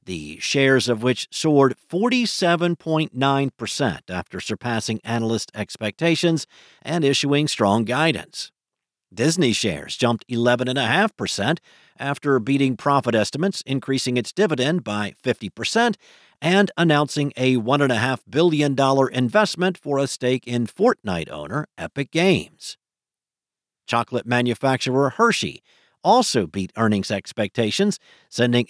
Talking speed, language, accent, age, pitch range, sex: 100 wpm, English, American, 50-69, 120-160 Hz, male